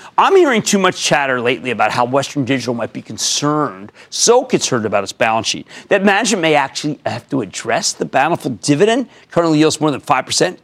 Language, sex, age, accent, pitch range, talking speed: English, male, 40-59, American, 130-200 Hz, 190 wpm